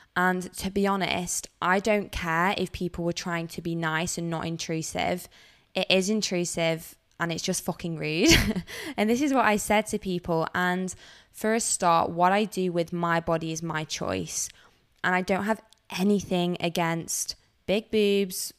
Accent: British